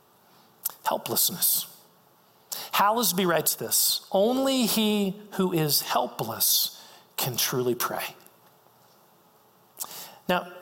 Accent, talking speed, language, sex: American, 75 wpm, English, male